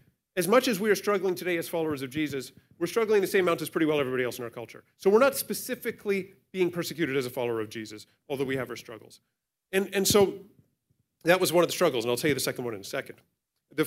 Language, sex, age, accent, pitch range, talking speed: English, male, 40-59, American, 135-195 Hz, 260 wpm